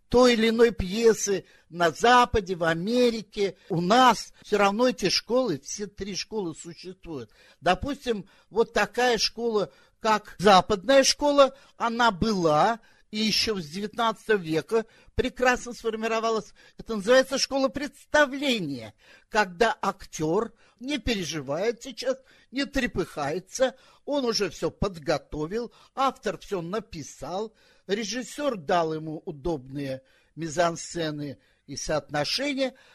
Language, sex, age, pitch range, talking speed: Russian, male, 50-69, 170-245 Hz, 105 wpm